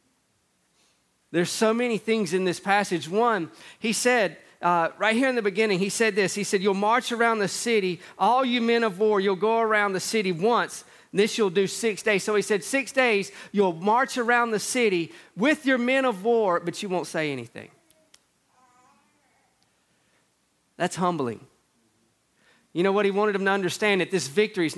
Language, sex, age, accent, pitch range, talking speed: English, male, 40-59, American, 170-225 Hz, 185 wpm